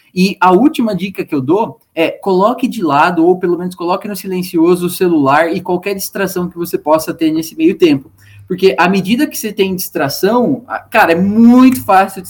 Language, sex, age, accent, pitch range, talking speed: Portuguese, male, 20-39, Brazilian, 165-220 Hz, 200 wpm